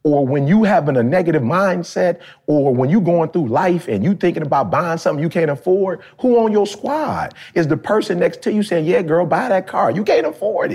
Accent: American